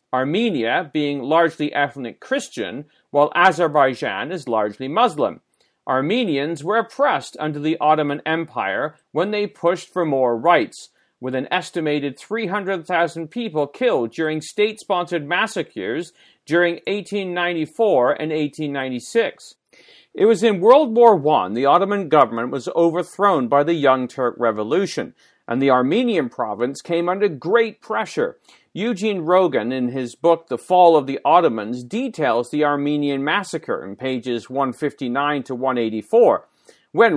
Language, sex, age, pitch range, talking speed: English, male, 40-59, 140-195 Hz, 130 wpm